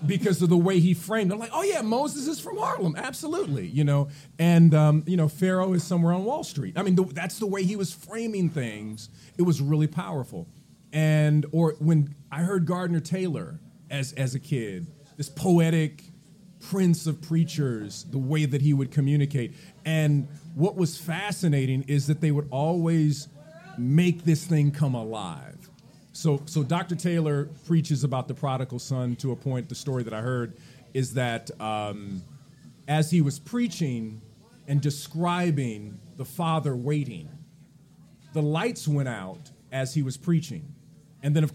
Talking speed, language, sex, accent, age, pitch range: 170 wpm, English, male, American, 40-59, 145-175 Hz